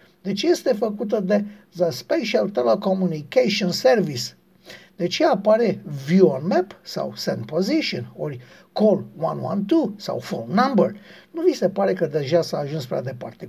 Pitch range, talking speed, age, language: 180-230 Hz, 145 wpm, 60-79, Romanian